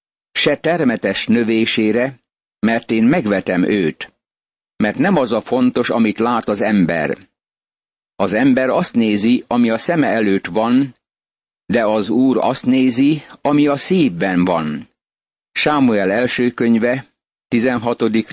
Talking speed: 125 wpm